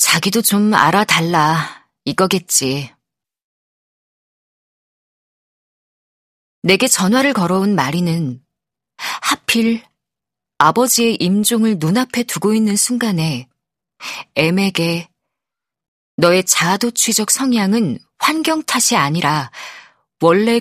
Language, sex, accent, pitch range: Korean, female, native, 165-230 Hz